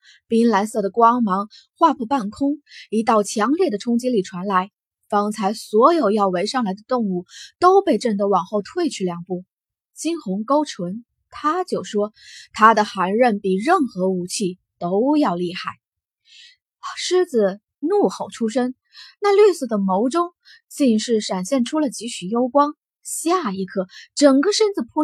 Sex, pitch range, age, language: female, 195-290 Hz, 20-39, Chinese